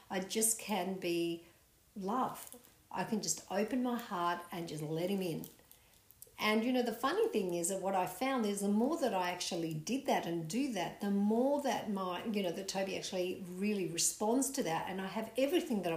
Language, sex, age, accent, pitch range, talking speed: English, female, 50-69, Australian, 175-225 Hz, 210 wpm